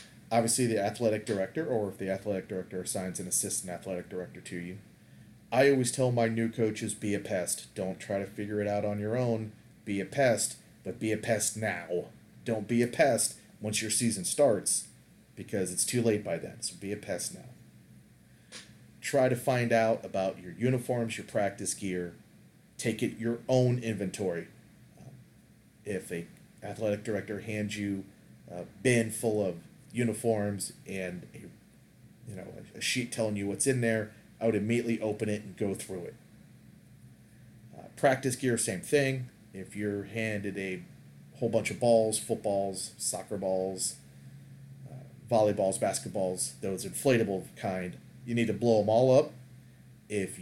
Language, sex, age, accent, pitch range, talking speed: English, male, 30-49, American, 100-120 Hz, 160 wpm